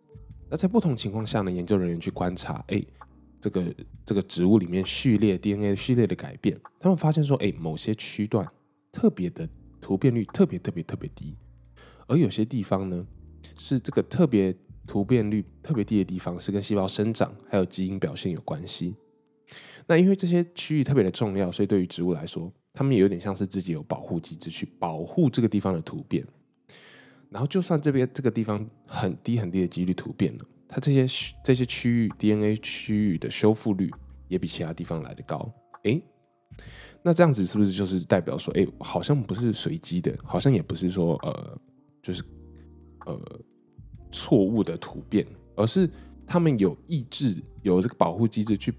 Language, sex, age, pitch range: Chinese, male, 10-29, 95-135 Hz